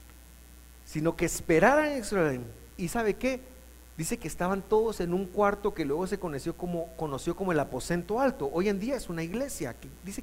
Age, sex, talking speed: 40-59, male, 190 wpm